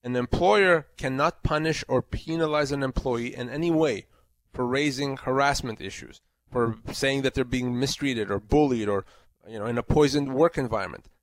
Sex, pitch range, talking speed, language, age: male, 125-165 Hz, 165 wpm, English, 30-49